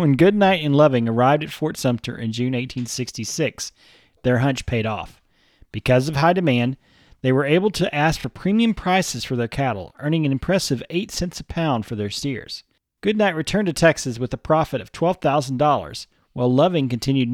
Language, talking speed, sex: English, 180 wpm, male